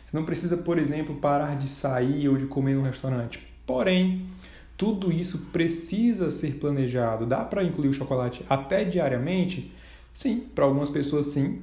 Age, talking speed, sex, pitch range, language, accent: 20-39, 155 wpm, male, 135-180 Hz, Portuguese, Brazilian